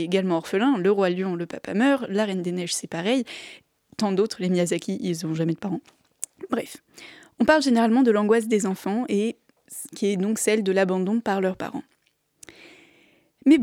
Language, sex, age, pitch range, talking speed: French, female, 20-39, 190-235 Hz, 190 wpm